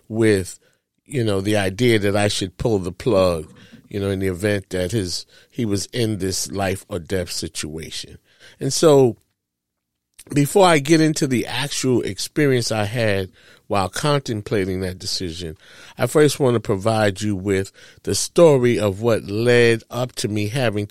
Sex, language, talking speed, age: male, English, 165 wpm, 30-49